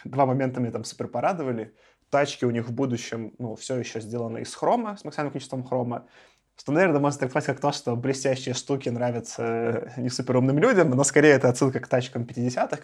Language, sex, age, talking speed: Russian, male, 20-39, 195 wpm